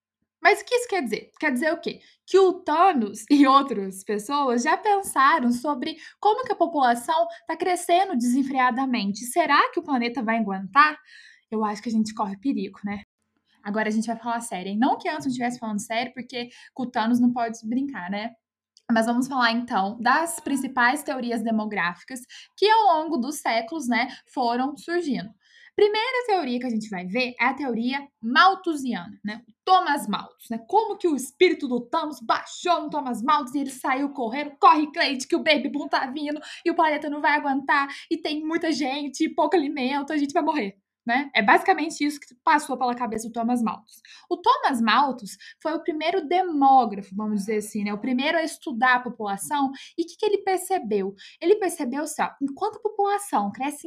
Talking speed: 195 wpm